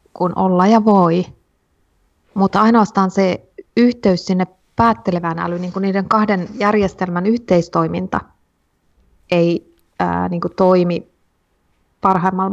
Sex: female